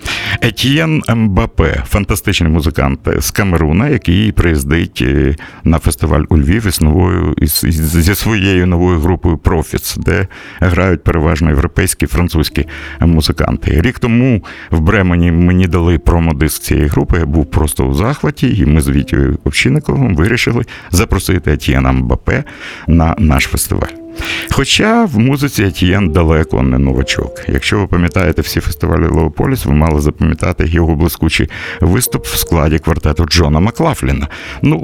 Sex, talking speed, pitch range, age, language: male, 140 wpm, 80-95 Hz, 60-79, Russian